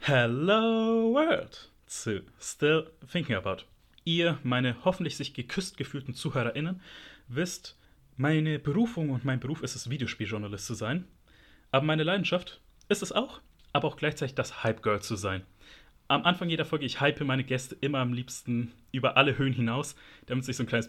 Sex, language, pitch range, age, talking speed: male, German, 120-160 Hz, 30-49, 165 wpm